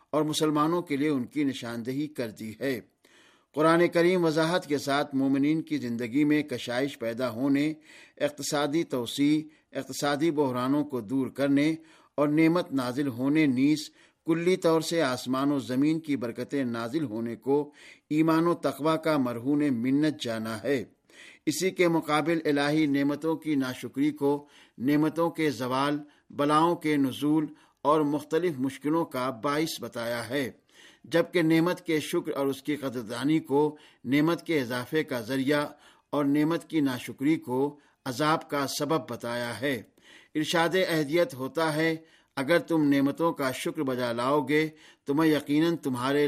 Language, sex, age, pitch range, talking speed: Urdu, male, 50-69, 130-155 Hz, 150 wpm